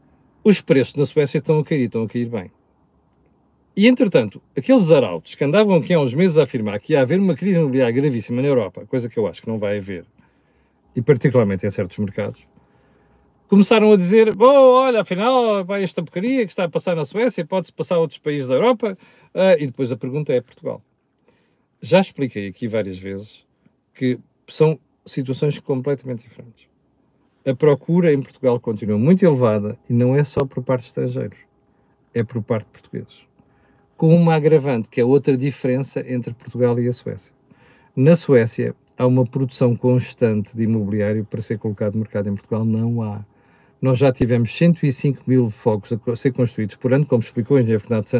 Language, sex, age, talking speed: Portuguese, male, 40-59, 185 wpm